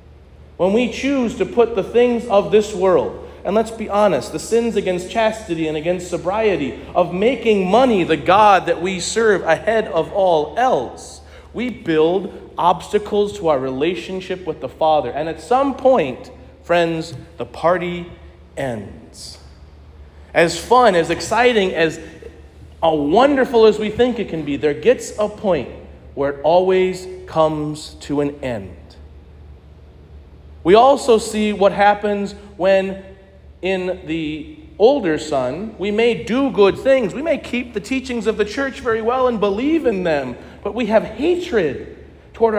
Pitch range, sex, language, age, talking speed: 150-225 Hz, male, English, 40-59, 150 wpm